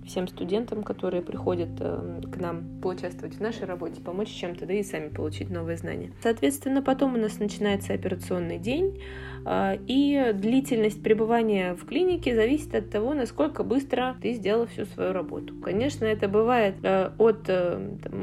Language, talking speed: Russian, 150 wpm